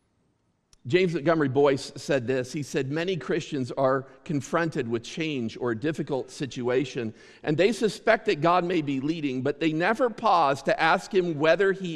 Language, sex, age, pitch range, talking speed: English, male, 50-69, 135-185 Hz, 170 wpm